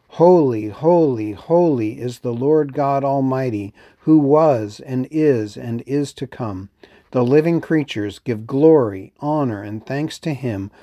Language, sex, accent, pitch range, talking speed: English, male, American, 105-150 Hz, 145 wpm